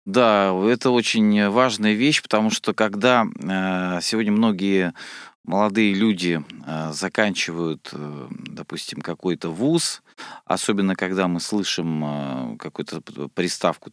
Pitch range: 85-110 Hz